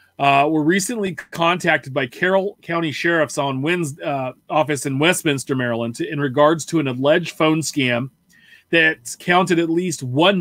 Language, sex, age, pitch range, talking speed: English, male, 30-49, 140-175 Hz, 160 wpm